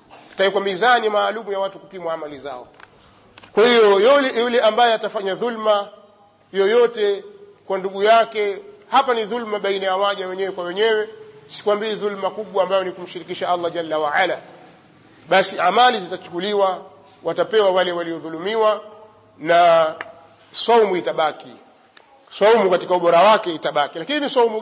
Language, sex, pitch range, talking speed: Swahili, male, 190-245 Hz, 130 wpm